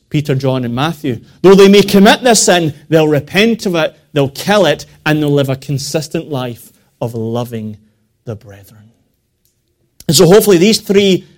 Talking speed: 170 wpm